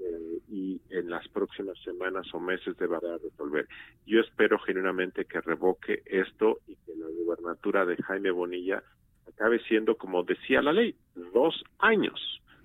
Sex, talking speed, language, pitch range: male, 140 wpm, Spanish, 90-140 Hz